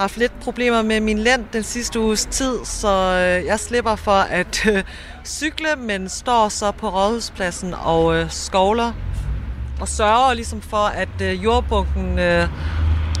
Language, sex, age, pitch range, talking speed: Danish, female, 30-49, 160-210 Hz, 140 wpm